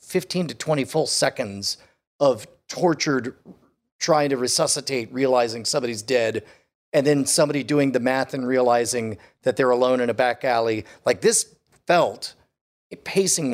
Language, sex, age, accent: English, male, 40-59, American